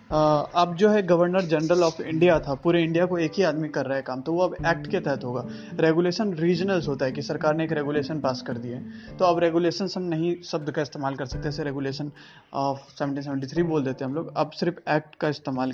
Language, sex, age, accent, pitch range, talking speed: Hindi, male, 20-39, native, 140-170 Hz, 235 wpm